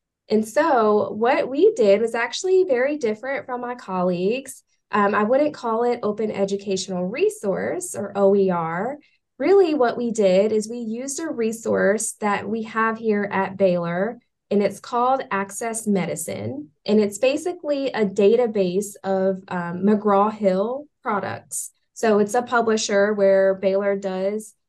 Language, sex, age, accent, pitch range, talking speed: English, female, 10-29, American, 195-245 Hz, 145 wpm